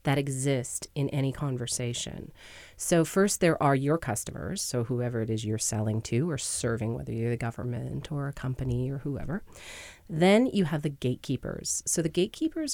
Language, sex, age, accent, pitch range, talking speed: English, female, 30-49, American, 130-180 Hz, 175 wpm